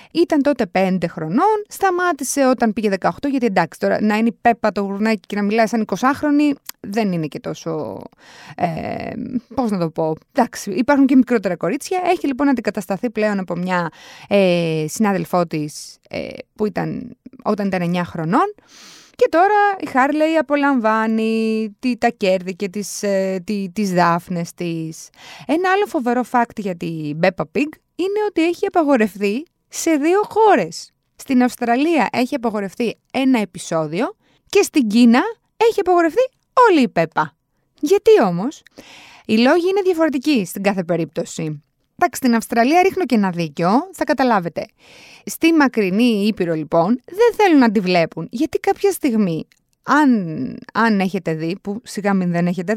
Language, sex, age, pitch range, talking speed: Greek, female, 20-39, 190-290 Hz, 155 wpm